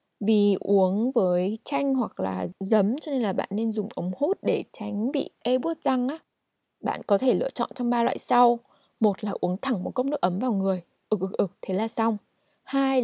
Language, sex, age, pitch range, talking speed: Vietnamese, female, 20-39, 195-255 Hz, 230 wpm